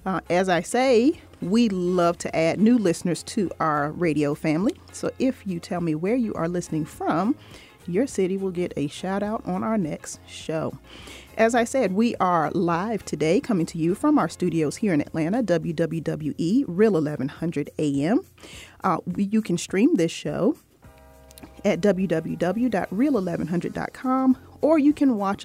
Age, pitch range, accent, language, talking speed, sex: 40-59, 165-220 Hz, American, English, 160 wpm, female